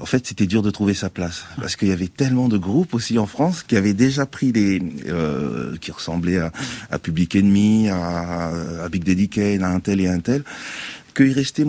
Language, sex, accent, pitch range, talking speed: French, male, French, 90-125 Hz, 220 wpm